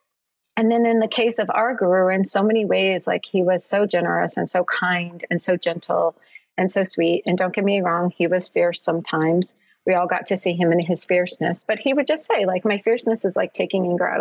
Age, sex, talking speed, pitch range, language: 40-59, female, 240 wpm, 190-240 Hz, English